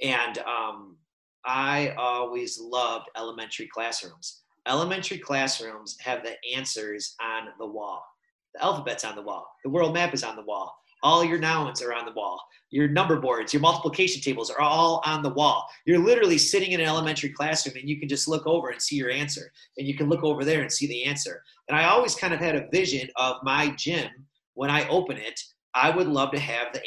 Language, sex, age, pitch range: English, male, 30-49, 135-165 Hz